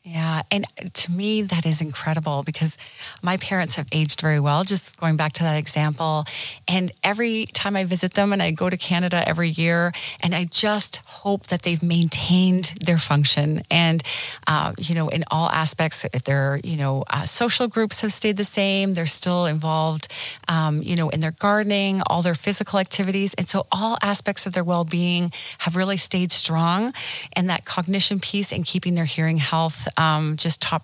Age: 40-59